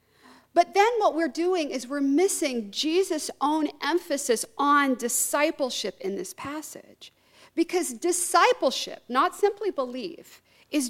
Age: 50-69